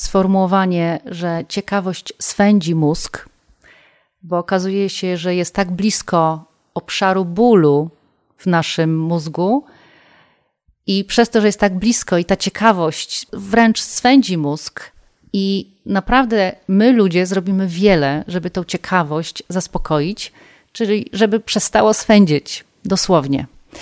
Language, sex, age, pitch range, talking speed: Polish, female, 40-59, 175-220 Hz, 115 wpm